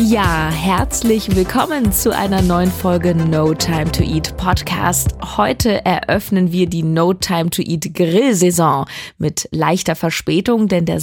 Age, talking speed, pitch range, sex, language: 20-39, 100 wpm, 165-200 Hz, female, German